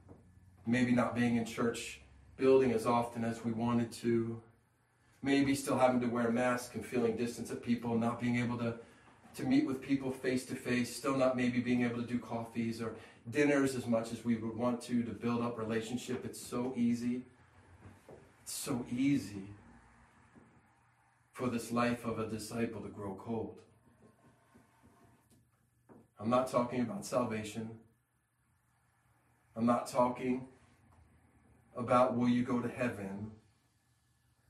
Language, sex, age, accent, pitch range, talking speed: English, male, 30-49, American, 115-125 Hz, 145 wpm